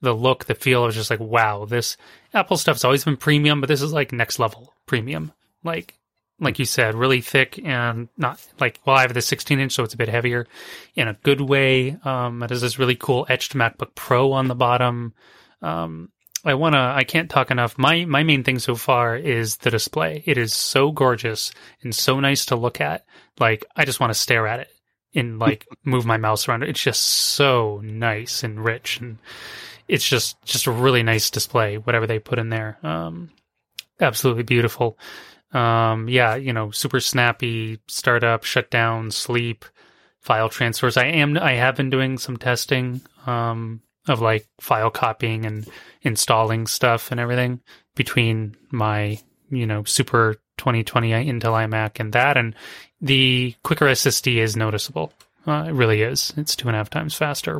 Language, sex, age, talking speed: English, male, 30-49, 185 wpm